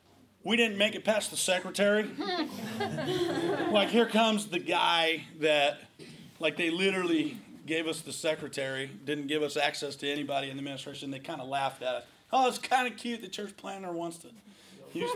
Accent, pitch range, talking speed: American, 150-205 Hz, 180 wpm